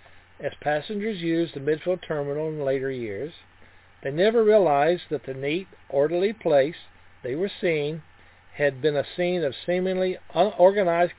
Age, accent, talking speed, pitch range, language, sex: 50-69, American, 145 wpm, 140-180 Hz, English, male